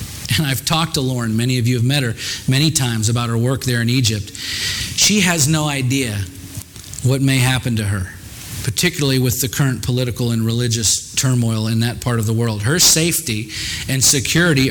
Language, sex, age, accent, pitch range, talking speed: English, male, 40-59, American, 110-140 Hz, 190 wpm